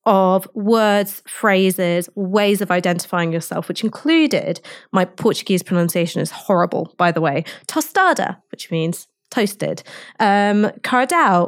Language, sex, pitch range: English, female, 185-245 Hz